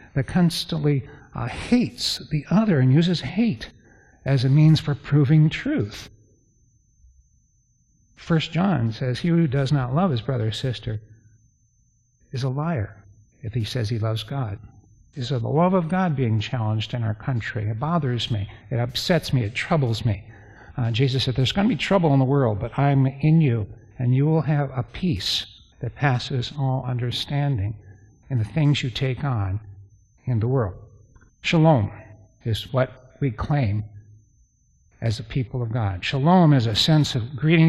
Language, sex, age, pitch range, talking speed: English, male, 60-79, 110-140 Hz, 165 wpm